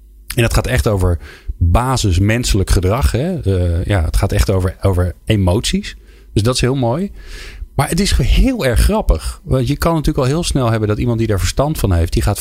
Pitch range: 85-105 Hz